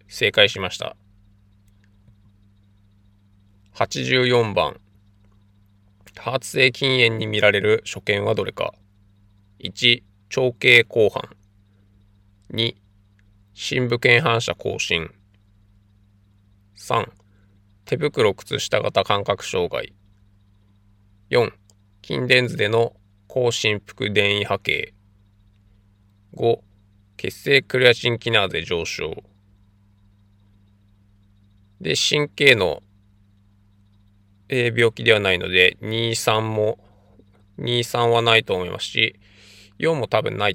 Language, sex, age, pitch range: Japanese, male, 20-39, 100-110 Hz